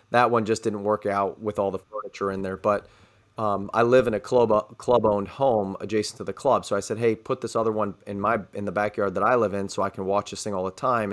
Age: 30-49